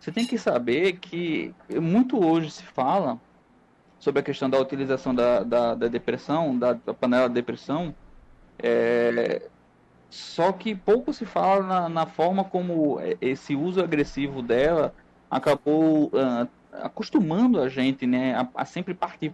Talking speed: 145 wpm